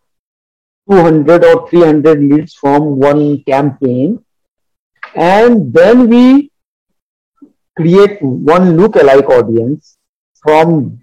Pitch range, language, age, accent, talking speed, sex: 140-220 Hz, English, 50-69, Indian, 85 wpm, male